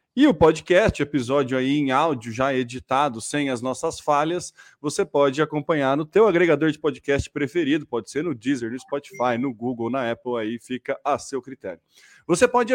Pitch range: 140-190 Hz